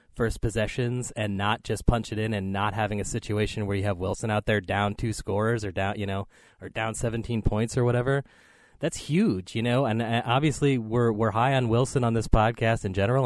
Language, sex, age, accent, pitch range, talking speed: English, male, 30-49, American, 105-125 Hz, 215 wpm